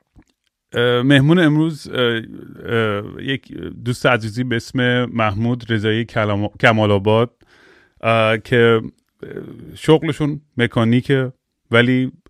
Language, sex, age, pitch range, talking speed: Persian, male, 30-49, 105-125 Hz, 75 wpm